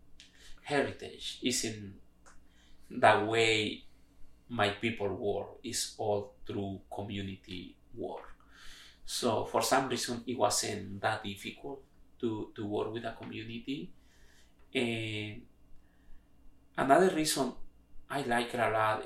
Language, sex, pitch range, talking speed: English, male, 100-120 Hz, 110 wpm